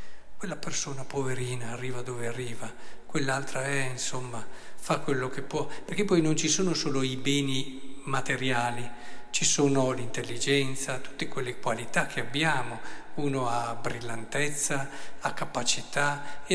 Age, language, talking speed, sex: 50-69, Italian, 130 wpm, male